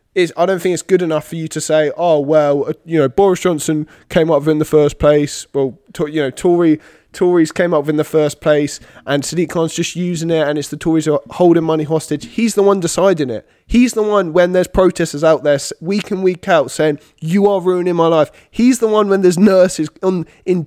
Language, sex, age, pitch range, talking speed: English, male, 20-39, 155-190 Hz, 240 wpm